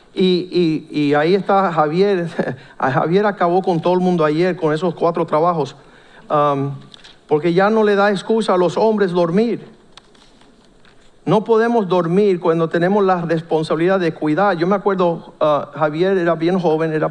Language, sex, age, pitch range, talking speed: Spanish, male, 60-79, 150-190 Hz, 155 wpm